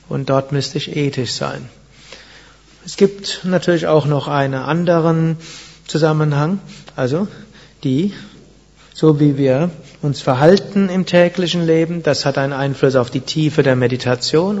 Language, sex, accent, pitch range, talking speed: German, male, German, 140-165 Hz, 135 wpm